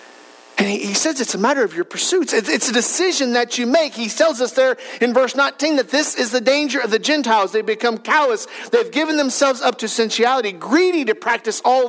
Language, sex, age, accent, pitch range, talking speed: English, male, 40-59, American, 180-270 Hz, 225 wpm